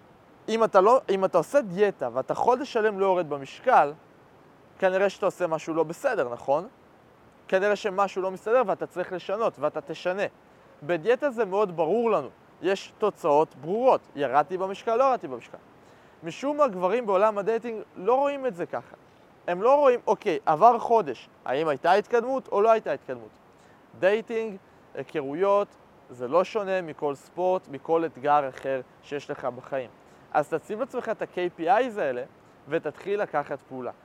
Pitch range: 150-210 Hz